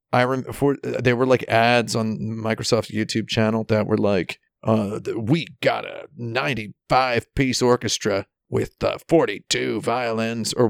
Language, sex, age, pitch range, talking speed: English, male, 40-59, 110-130 Hz, 135 wpm